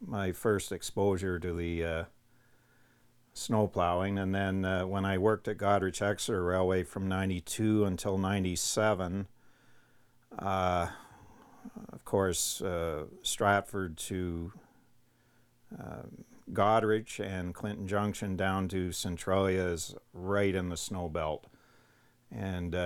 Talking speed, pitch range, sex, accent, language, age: 110 wpm, 90-105 Hz, male, American, English, 50-69